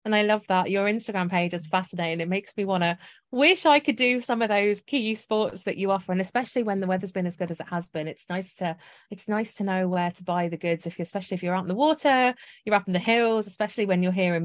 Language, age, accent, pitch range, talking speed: English, 30-49, British, 175-225 Hz, 285 wpm